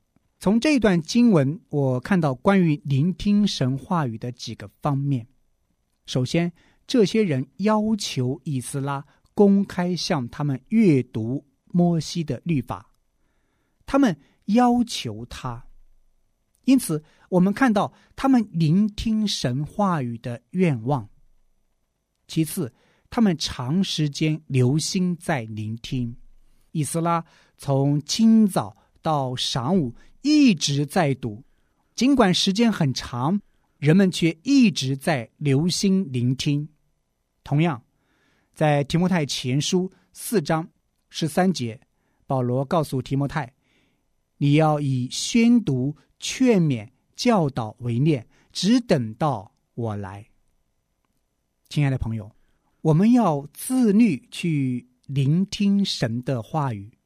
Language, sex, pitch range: Chinese, male, 130-190 Hz